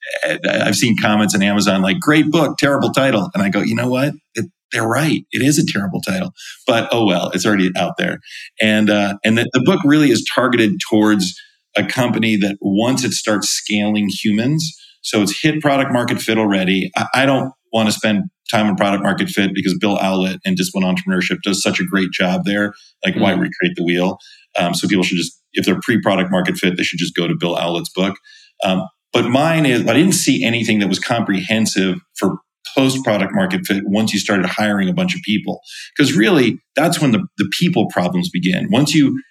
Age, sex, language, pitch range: 40-59, male, English, 95-130 Hz